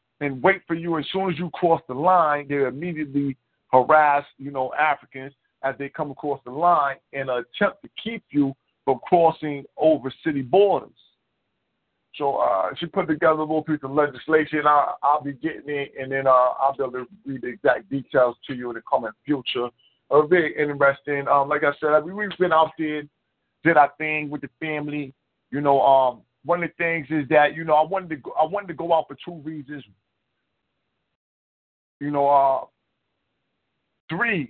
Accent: American